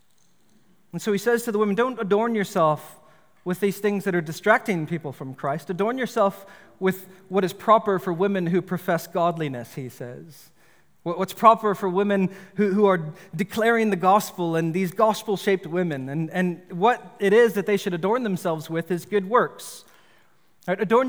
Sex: male